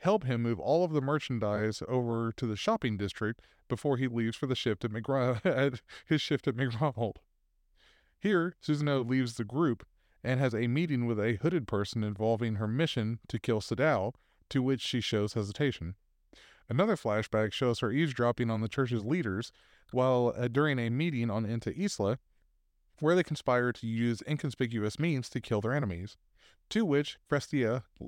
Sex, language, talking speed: male, English, 170 wpm